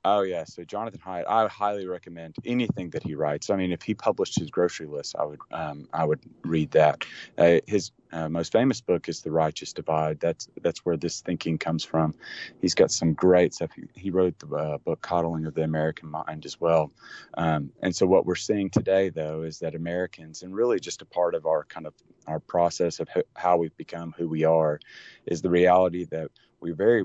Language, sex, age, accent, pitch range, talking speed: English, male, 30-49, American, 80-95 Hz, 215 wpm